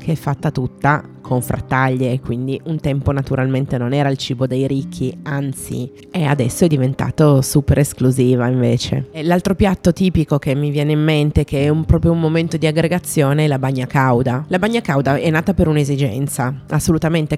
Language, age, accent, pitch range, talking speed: Italian, 30-49, native, 140-175 Hz, 175 wpm